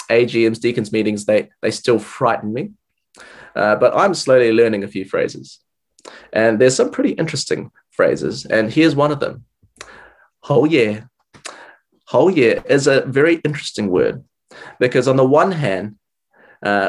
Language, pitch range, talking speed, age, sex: English, 110-155 Hz, 155 wpm, 20-39, male